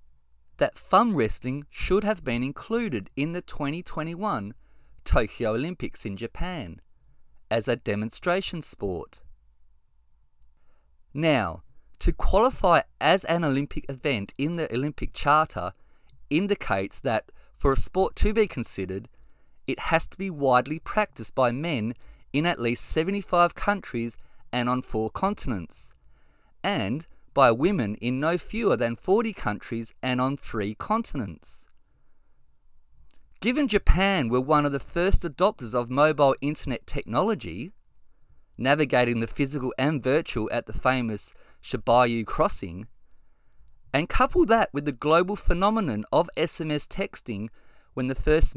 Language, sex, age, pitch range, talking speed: English, male, 30-49, 115-165 Hz, 125 wpm